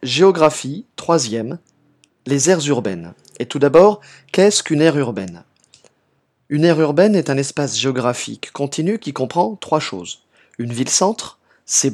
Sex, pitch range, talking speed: male, 120-165 Hz, 135 wpm